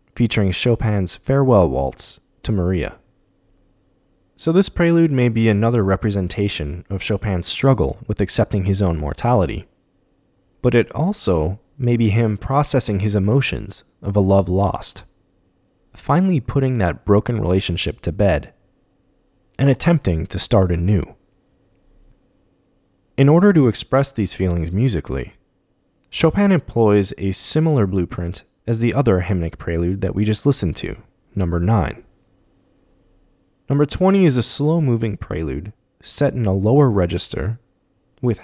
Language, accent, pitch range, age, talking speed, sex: English, American, 90-125 Hz, 20-39, 130 wpm, male